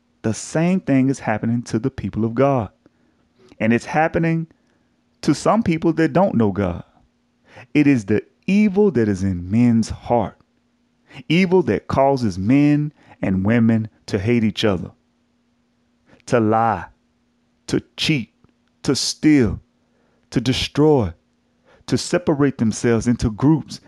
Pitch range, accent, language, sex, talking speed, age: 115-175 Hz, American, English, male, 130 wpm, 30-49